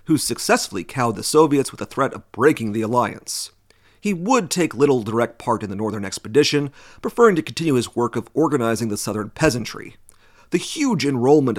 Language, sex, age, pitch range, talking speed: English, male, 40-59, 110-150 Hz, 180 wpm